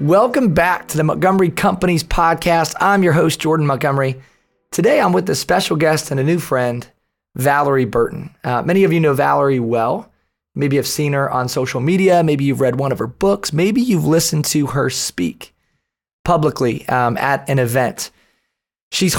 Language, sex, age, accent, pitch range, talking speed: English, male, 30-49, American, 135-165 Hz, 180 wpm